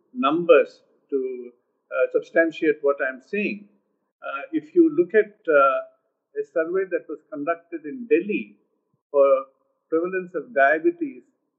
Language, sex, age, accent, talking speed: English, male, 50-69, Indian, 125 wpm